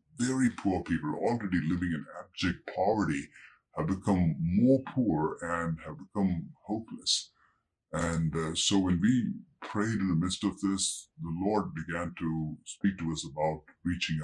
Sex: female